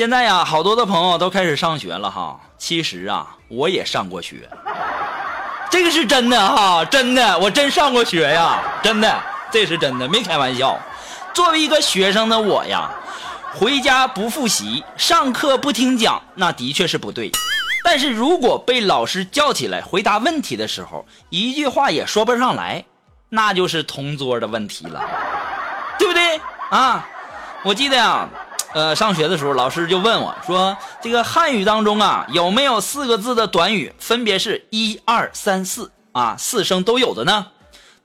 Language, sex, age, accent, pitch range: Chinese, male, 20-39, native, 185-310 Hz